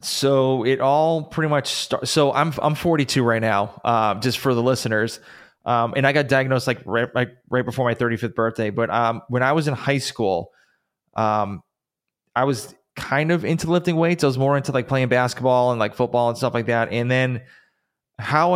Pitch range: 115-135 Hz